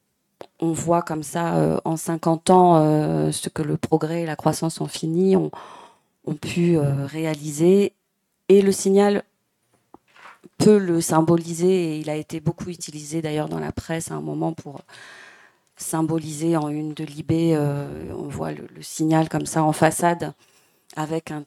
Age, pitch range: 40-59, 155-175 Hz